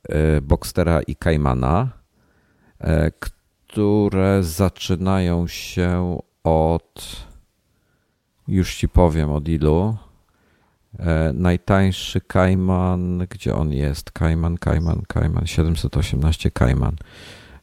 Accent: native